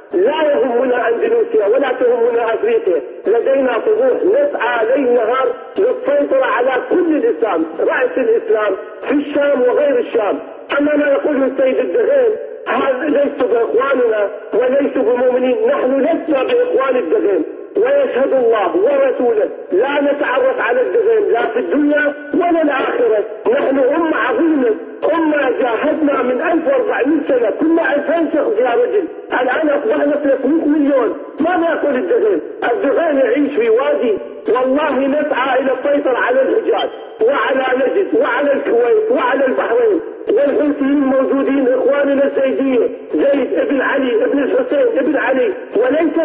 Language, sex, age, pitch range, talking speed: Arabic, male, 50-69, 285-475 Hz, 120 wpm